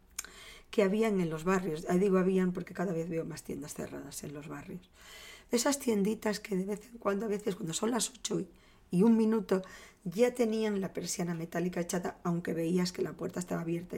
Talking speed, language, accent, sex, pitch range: 200 wpm, Spanish, Spanish, female, 170-220 Hz